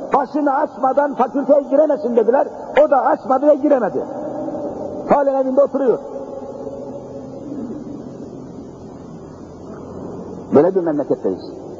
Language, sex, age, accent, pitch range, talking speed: Turkish, male, 60-79, native, 230-295 Hz, 80 wpm